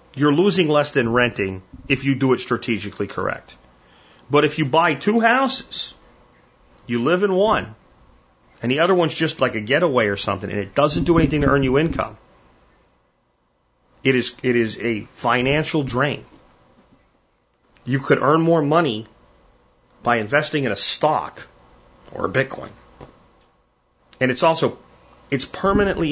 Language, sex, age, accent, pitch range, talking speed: English, male, 40-59, American, 110-150 Hz, 150 wpm